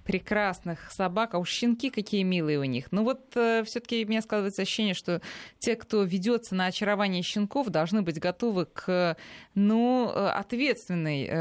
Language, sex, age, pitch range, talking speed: Russian, female, 20-39, 165-215 Hz, 160 wpm